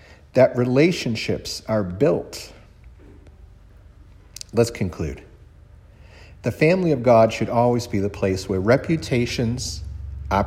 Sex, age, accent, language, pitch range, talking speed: male, 50-69, American, English, 95-135 Hz, 105 wpm